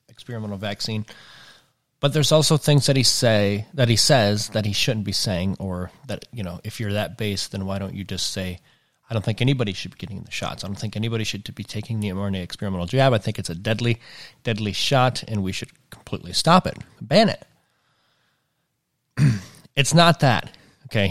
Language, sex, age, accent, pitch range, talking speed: English, male, 30-49, American, 100-130 Hz, 200 wpm